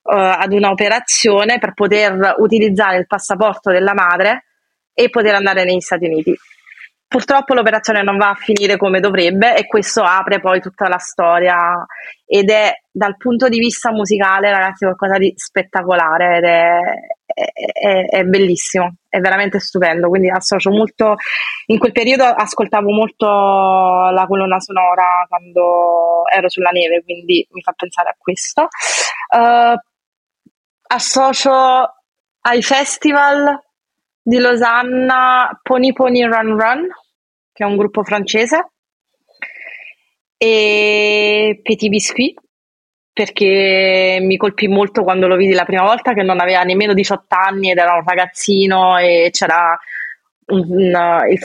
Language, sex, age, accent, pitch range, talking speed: Italian, female, 30-49, native, 185-240 Hz, 135 wpm